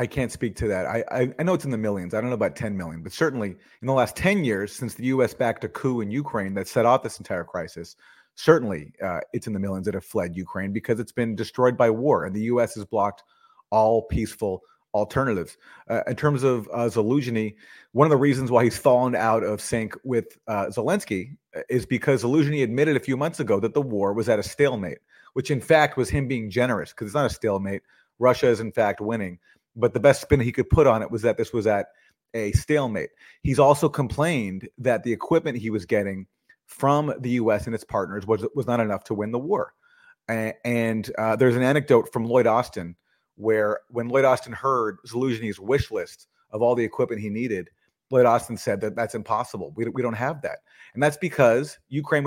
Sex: male